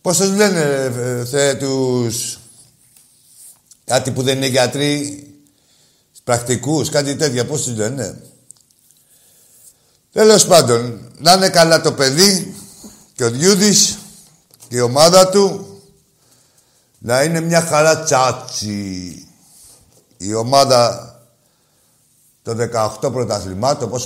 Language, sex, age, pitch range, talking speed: Greek, male, 60-79, 115-165 Hz, 95 wpm